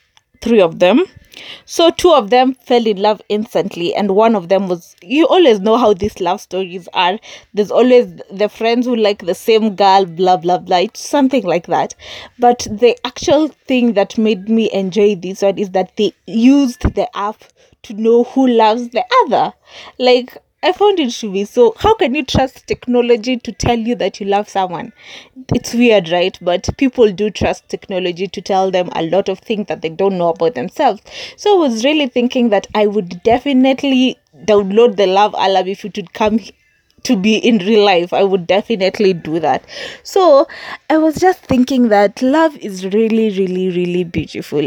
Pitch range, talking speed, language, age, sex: 195-255 Hz, 190 wpm, English, 20-39, female